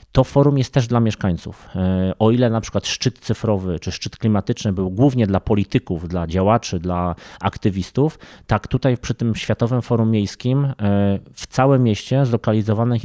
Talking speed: 155 wpm